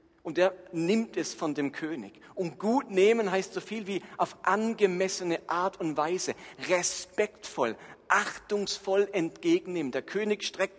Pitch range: 175-215 Hz